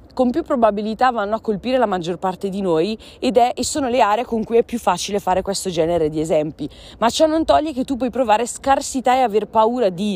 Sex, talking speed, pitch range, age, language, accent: female, 235 wpm, 195-270 Hz, 20-39, Italian, native